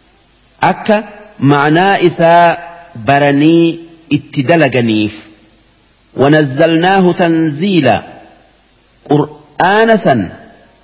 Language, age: Arabic, 50-69